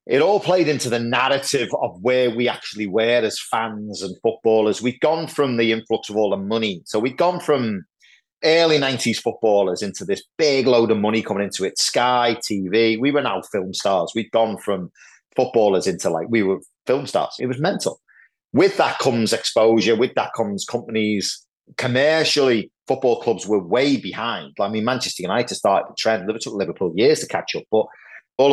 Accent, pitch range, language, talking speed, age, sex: British, 110-155 Hz, English, 190 wpm, 30-49, male